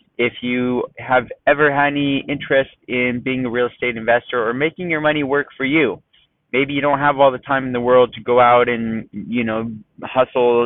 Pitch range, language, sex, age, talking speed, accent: 110-130 Hz, English, male, 30-49, 210 wpm, American